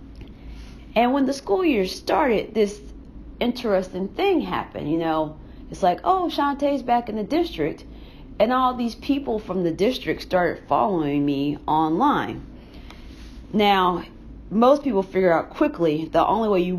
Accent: American